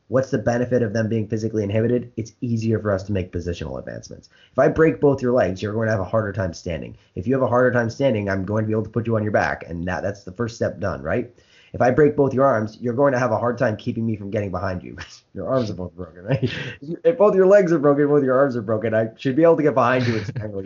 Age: 30-49